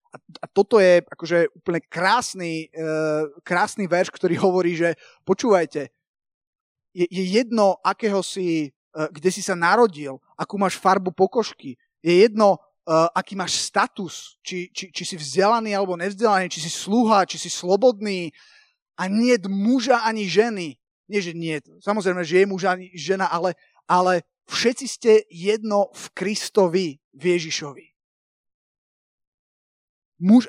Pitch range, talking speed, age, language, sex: 165-215 Hz, 130 wpm, 30-49, Slovak, male